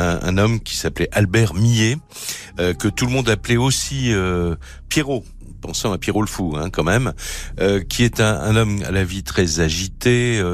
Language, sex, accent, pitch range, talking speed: French, male, French, 80-110 Hz, 200 wpm